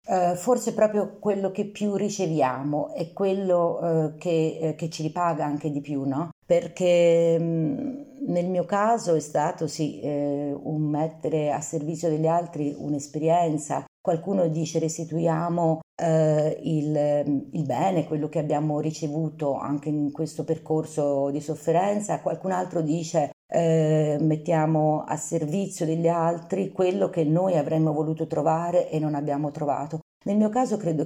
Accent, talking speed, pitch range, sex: native, 135 wpm, 150-180 Hz, female